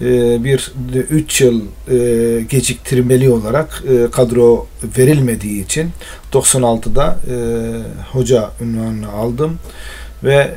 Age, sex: 40-59, male